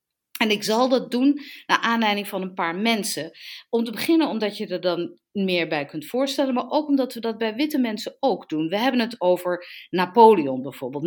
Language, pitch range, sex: Dutch, 170-235 Hz, female